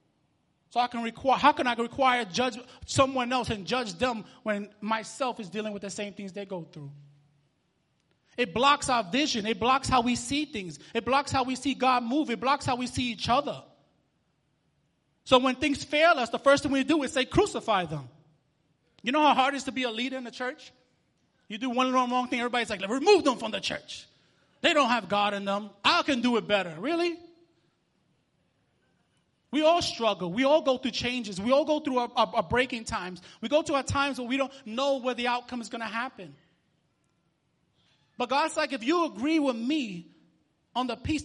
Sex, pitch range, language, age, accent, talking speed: male, 220-275 Hz, English, 30-49, American, 210 wpm